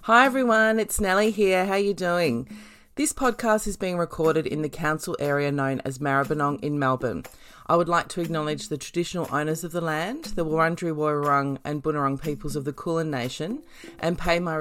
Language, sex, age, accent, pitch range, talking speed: English, female, 30-49, Australian, 145-195 Hz, 190 wpm